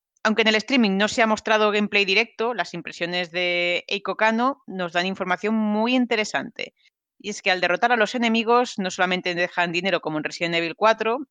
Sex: female